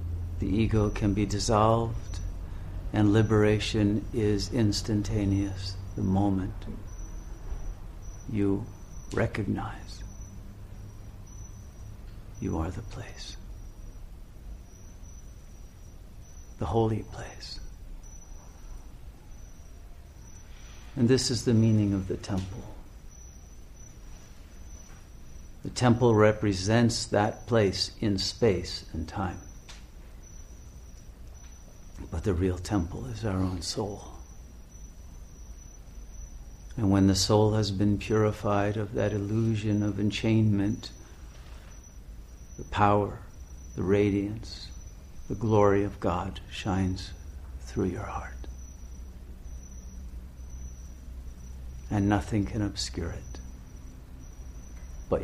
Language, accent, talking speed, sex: English, American, 80 wpm, male